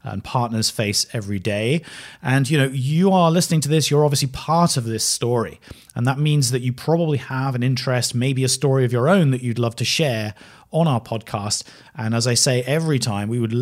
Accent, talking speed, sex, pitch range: British, 220 wpm, male, 115-150 Hz